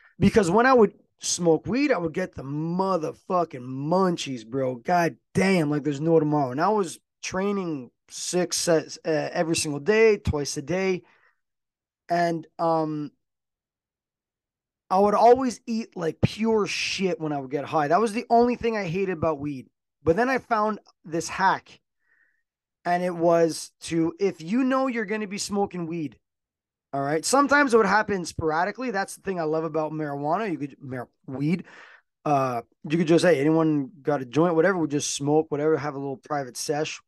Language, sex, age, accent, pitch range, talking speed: English, male, 20-39, American, 145-190 Hz, 180 wpm